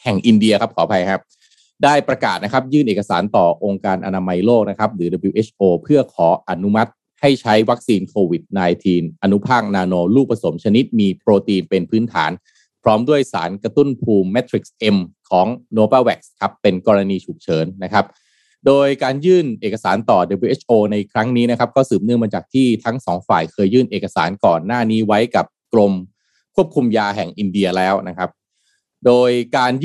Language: Thai